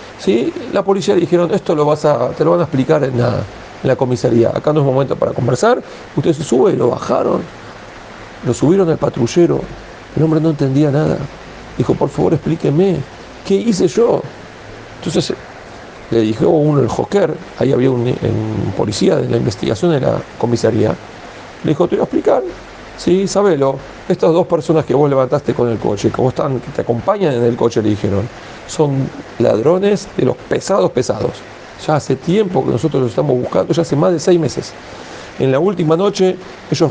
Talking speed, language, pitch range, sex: 190 wpm, Spanish, 125-175 Hz, male